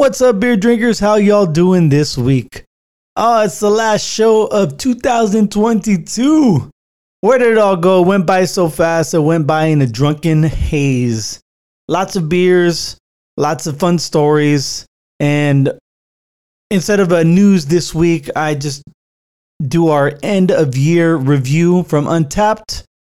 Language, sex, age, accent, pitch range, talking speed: English, male, 20-39, American, 150-210 Hz, 145 wpm